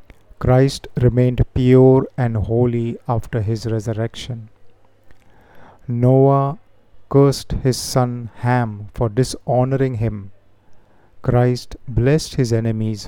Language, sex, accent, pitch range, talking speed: Hindi, male, native, 110-130 Hz, 90 wpm